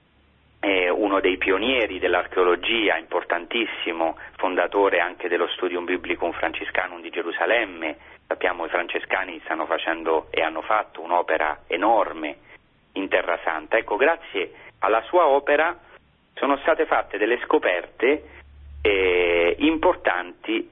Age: 40-59